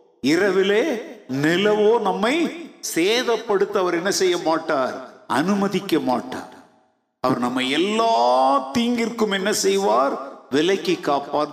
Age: 50-69